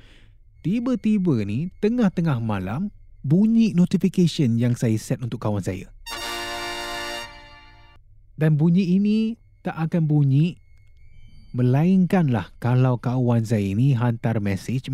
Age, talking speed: 20-39, 100 wpm